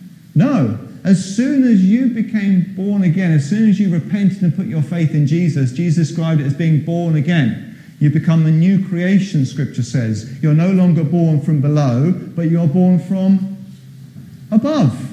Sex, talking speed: male, 175 wpm